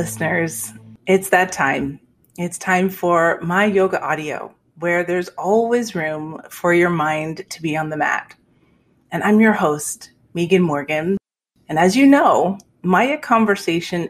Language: English